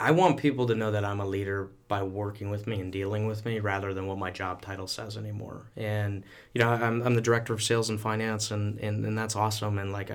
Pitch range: 105-120 Hz